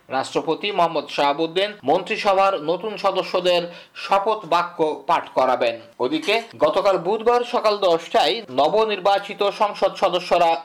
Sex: male